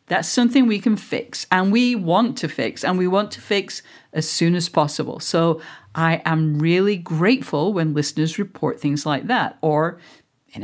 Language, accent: English, British